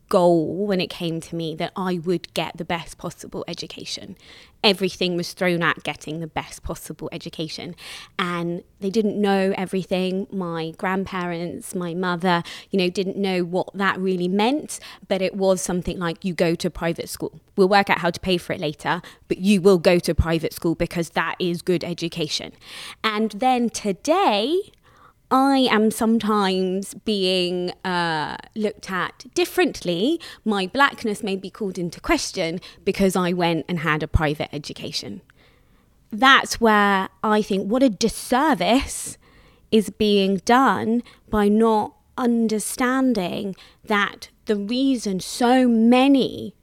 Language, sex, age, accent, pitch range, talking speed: English, female, 20-39, British, 180-220 Hz, 150 wpm